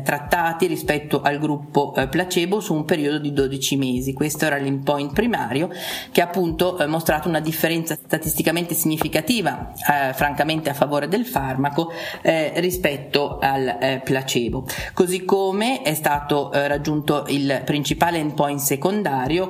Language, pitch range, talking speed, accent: Italian, 145-175 Hz, 135 wpm, native